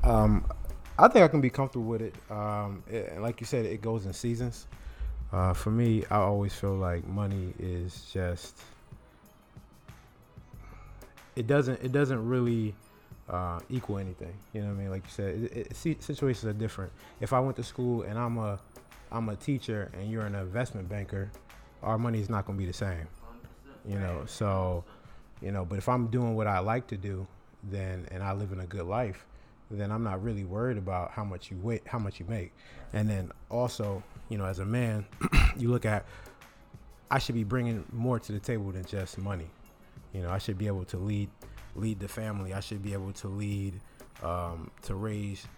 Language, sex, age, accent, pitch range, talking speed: English, male, 20-39, American, 95-115 Hz, 195 wpm